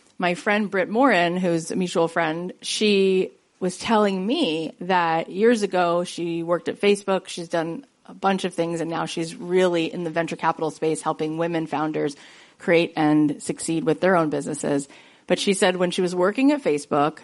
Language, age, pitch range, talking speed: English, 30-49, 160-215 Hz, 185 wpm